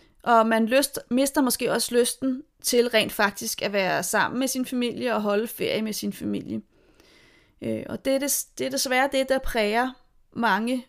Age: 30-49